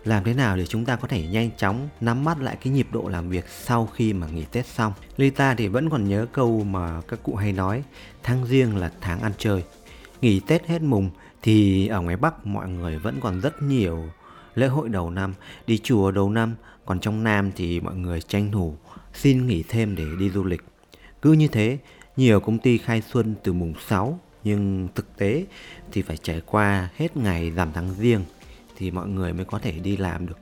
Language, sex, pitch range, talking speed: Vietnamese, male, 90-120 Hz, 215 wpm